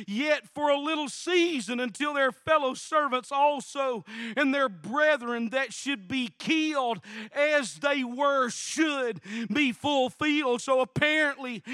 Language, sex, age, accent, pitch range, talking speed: English, male, 40-59, American, 265-315 Hz, 130 wpm